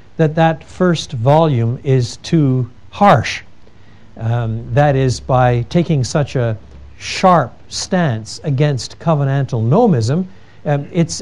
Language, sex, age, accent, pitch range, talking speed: Danish, male, 60-79, American, 125-185 Hz, 110 wpm